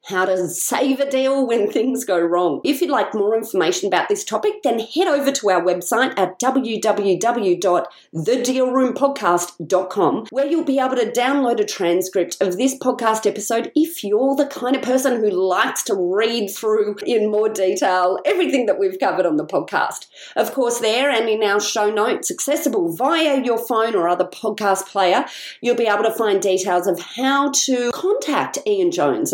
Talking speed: 175 wpm